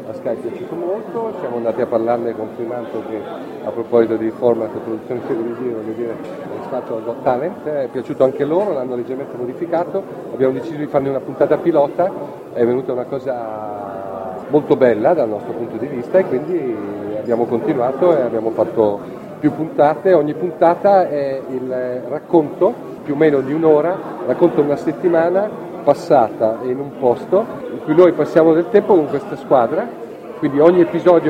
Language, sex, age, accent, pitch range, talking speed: Italian, male, 40-59, native, 125-165 Hz, 165 wpm